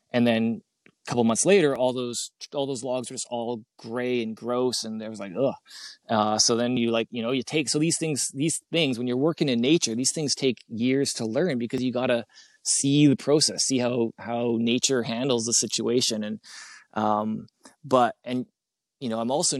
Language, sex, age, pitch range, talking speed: English, male, 20-39, 115-140 Hz, 210 wpm